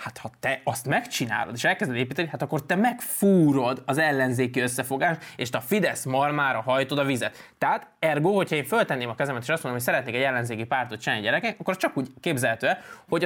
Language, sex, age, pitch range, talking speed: Hungarian, male, 20-39, 130-180 Hz, 200 wpm